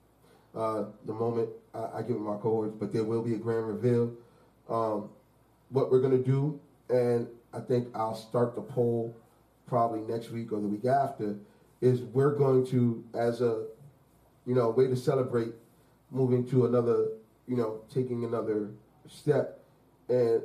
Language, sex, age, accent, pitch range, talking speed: English, male, 30-49, American, 110-130 Hz, 160 wpm